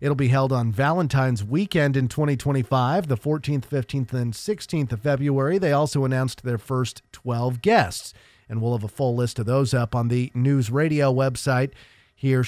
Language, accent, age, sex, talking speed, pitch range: English, American, 40-59, male, 180 wpm, 125-160 Hz